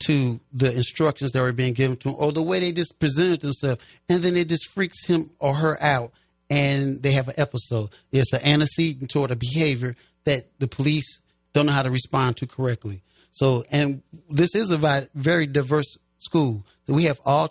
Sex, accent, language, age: male, American, English, 30-49